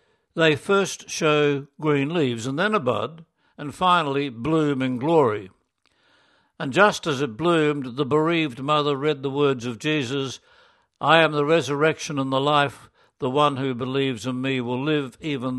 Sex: male